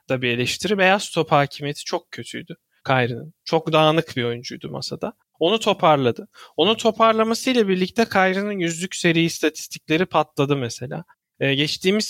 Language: Turkish